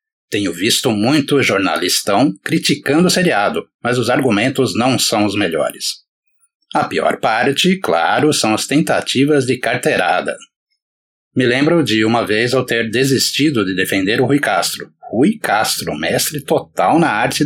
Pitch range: 120-175 Hz